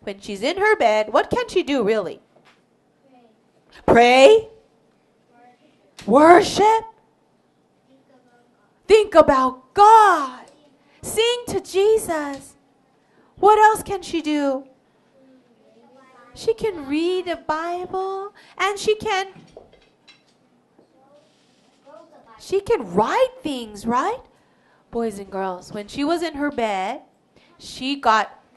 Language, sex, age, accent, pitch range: Korean, female, 30-49, American, 225-335 Hz